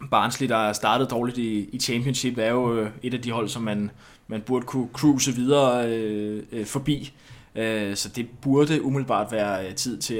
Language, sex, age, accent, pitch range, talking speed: Danish, male, 20-39, native, 110-135 Hz, 160 wpm